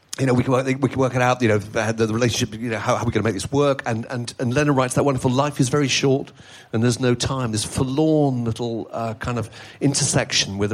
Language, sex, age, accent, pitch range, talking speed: English, male, 50-69, British, 115-160 Hz, 280 wpm